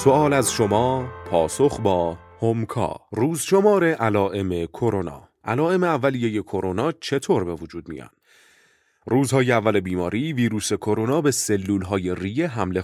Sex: male